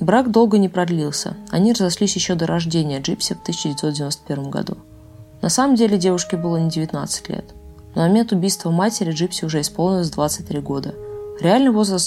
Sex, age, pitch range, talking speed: female, 20-39, 160-205 Hz, 165 wpm